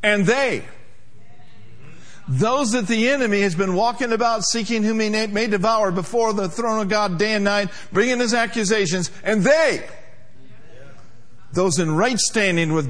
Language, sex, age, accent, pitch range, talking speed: English, male, 50-69, American, 150-235 Hz, 155 wpm